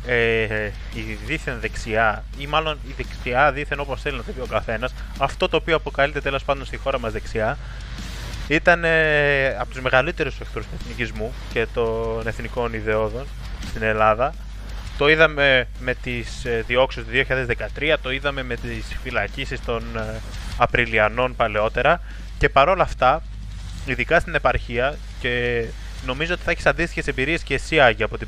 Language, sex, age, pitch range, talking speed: Greek, male, 20-39, 115-145 Hz, 165 wpm